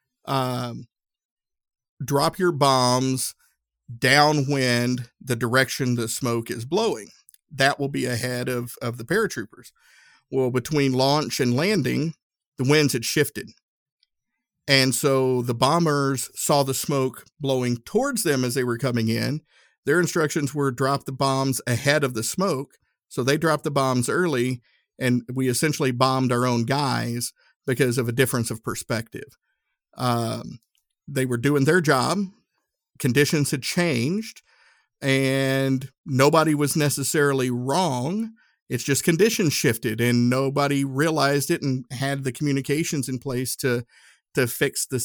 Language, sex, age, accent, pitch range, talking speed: English, male, 50-69, American, 125-150 Hz, 140 wpm